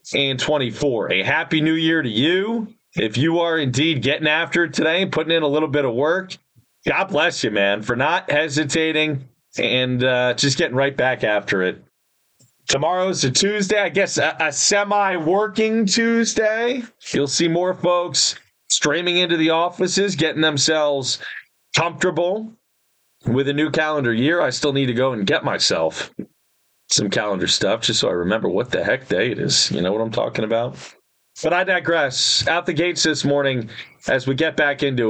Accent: American